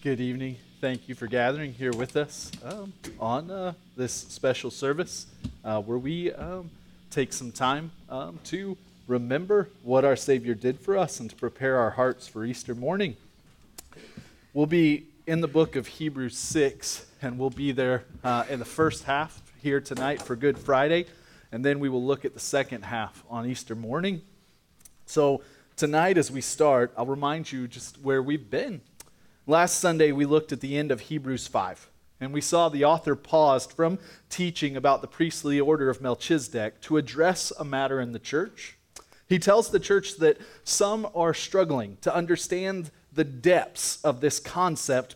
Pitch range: 130-170 Hz